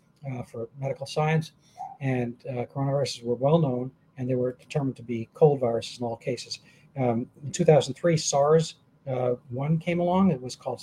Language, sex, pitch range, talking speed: English, male, 130-160 Hz, 170 wpm